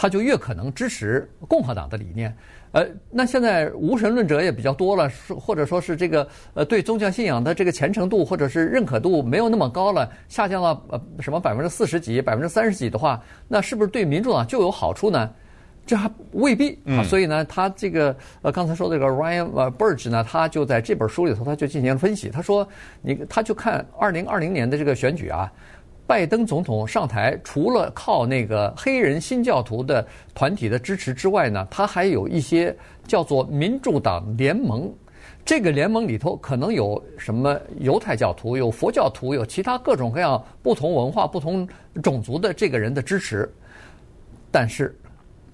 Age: 50-69